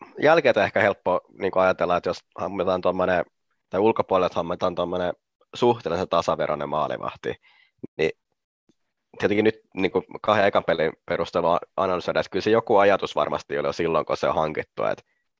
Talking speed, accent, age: 150 wpm, native, 20-39